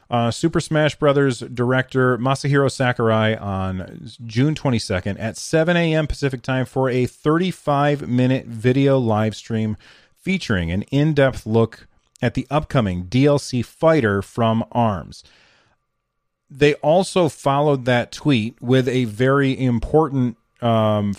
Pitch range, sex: 110-140 Hz, male